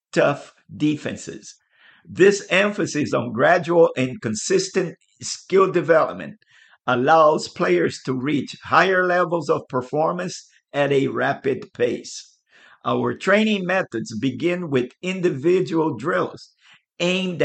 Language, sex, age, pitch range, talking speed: English, male, 50-69, 140-180 Hz, 105 wpm